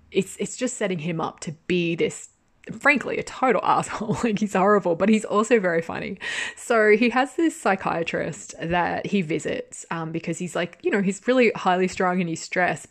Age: 20-39